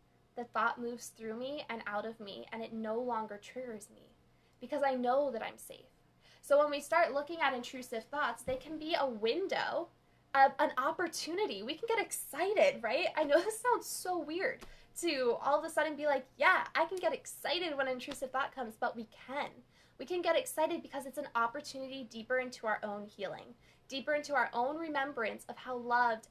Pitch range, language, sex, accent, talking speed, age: 230-300 Hz, English, female, American, 200 wpm, 10-29